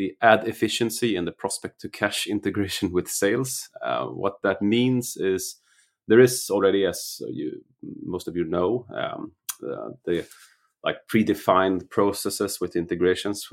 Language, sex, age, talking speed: English, male, 30-49, 145 wpm